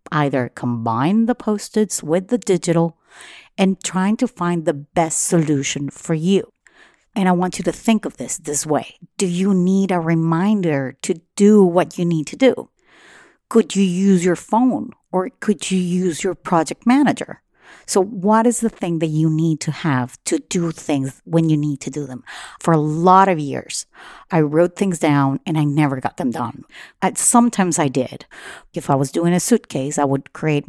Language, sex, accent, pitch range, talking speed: English, female, American, 150-195 Hz, 190 wpm